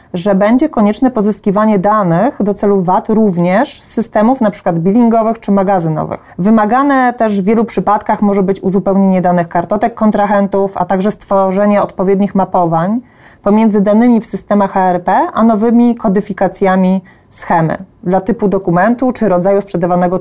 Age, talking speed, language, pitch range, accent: 30-49, 135 wpm, Polish, 190-220 Hz, native